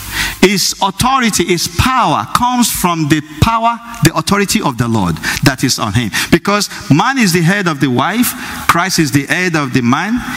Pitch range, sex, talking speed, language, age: 145-210 Hz, male, 185 wpm, English, 50-69